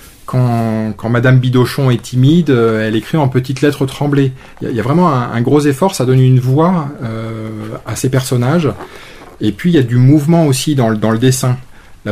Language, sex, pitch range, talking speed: French, male, 105-135 Hz, 215 wpm